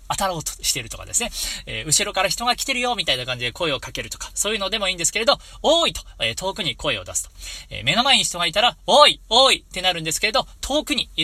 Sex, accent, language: male, native, Japanese